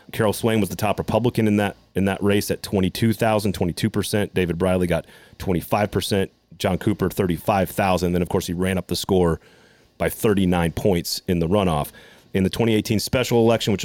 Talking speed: 180 wpm